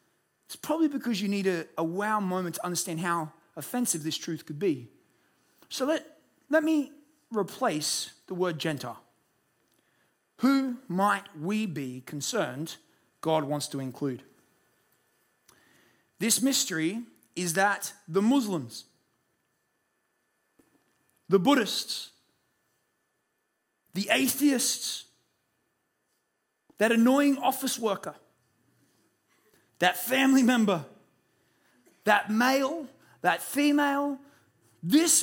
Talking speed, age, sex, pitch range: 95 wpm, 30-49, male, 185-270 Hz